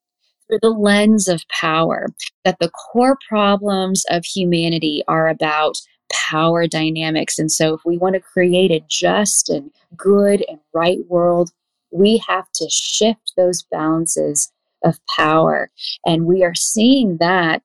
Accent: American